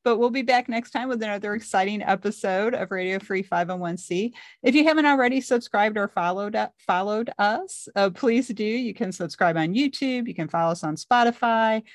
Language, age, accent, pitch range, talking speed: English, 40-59, American, 175-245 Hz, 190 wpm